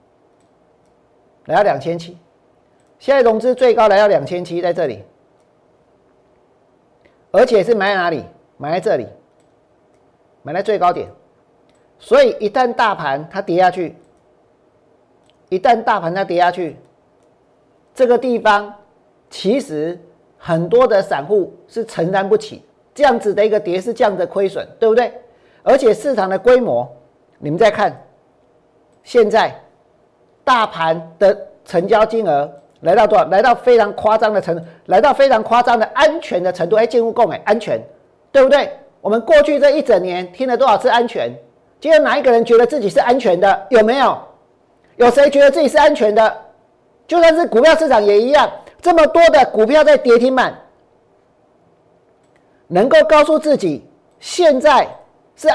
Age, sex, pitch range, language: 50-69, male, 185-275 Hz, Chinese